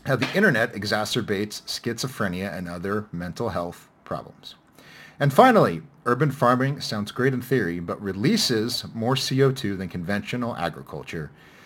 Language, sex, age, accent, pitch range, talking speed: English, male, 40-59, American, 100-135 Hz, 130 wpm